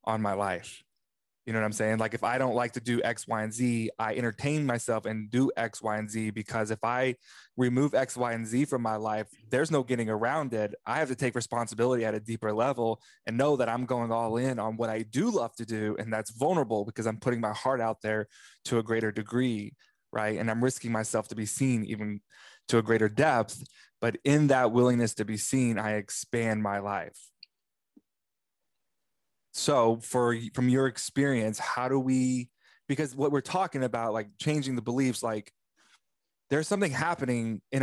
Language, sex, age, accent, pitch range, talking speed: English, male, 20-39, American, 110-125 Hz, 200 wpm